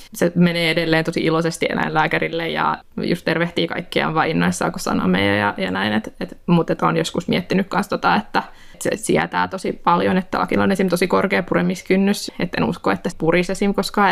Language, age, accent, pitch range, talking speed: Finnish, 20-39, native, 160-195 Hz, 175 wpm